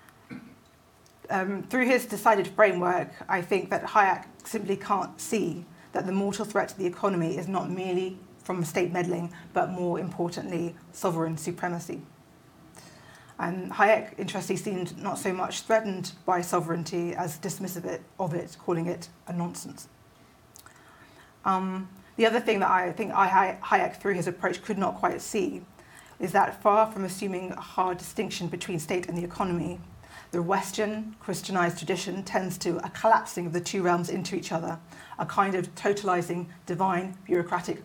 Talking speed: 155 wpm